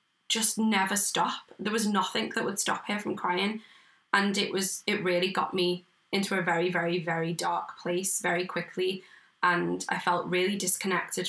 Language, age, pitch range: English, 10-29, 175-195 Hz